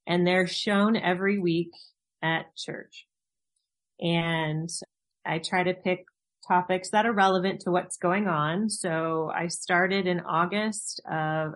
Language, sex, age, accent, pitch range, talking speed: English, female, 30-49, American, 160-195 Hz, 135 wpm